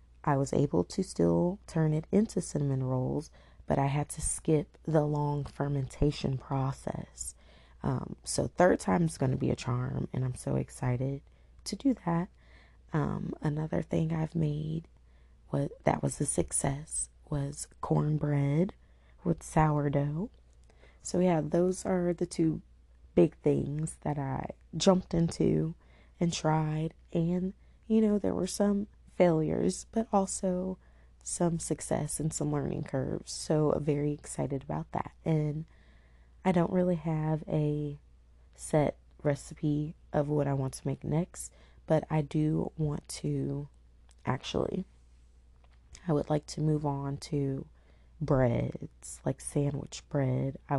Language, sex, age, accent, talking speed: English, female, 20-39, American, 140 wpm